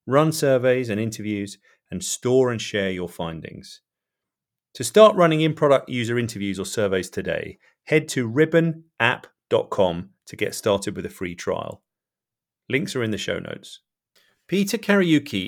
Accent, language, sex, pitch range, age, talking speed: British, English, male, 100-135 Hz, 40-59, 145 wpm